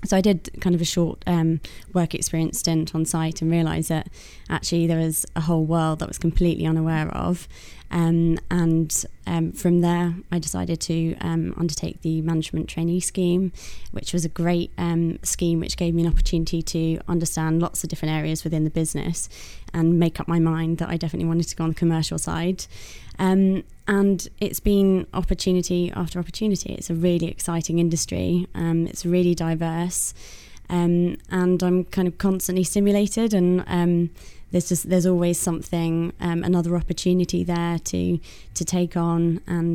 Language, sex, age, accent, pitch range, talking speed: English, female, 20-39, British, 165-175 Hz, 175 wpm